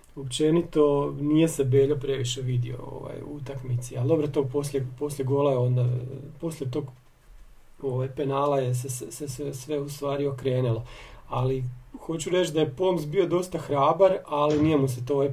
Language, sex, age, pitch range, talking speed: Croatian, male, 40-59, 130-160 Hz, 170 wpm